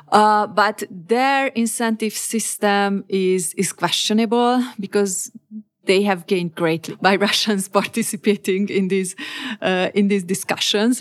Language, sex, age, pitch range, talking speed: Hungarian, female, 30-49, 175-215 Hz, 115 wpm